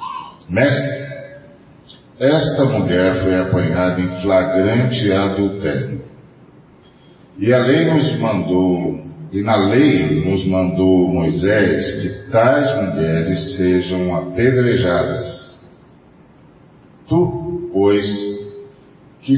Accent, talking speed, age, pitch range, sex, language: Brazilian, 85 wpm, 50-69, 95-130 Hz, male, Portuguese